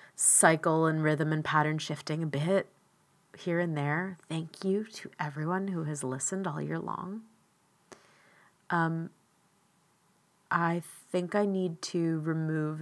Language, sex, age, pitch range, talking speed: English, female, 30-49, 150-185 Hz, 130 wpm